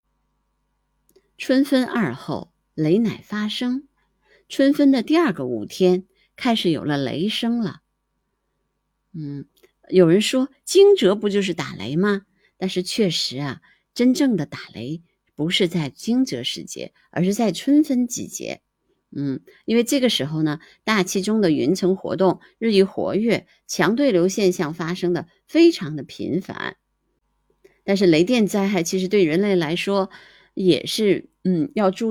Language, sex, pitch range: Chinese, female, 165-230 Hz